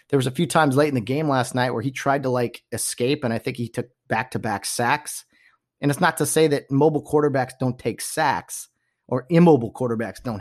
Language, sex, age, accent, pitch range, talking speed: English, male, 30-49, American, 105-135 Hz, 235 wpm